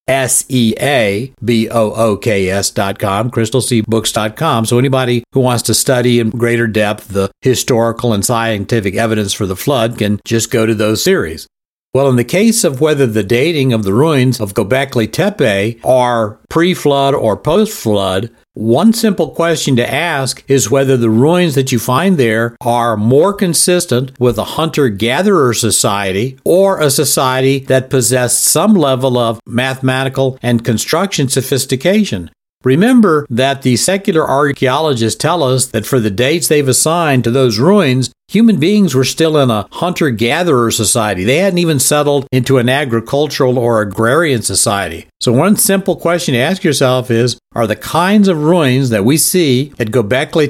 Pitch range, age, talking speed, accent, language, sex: 115-150 Hz, 60-79, 155 wpm, American, English, male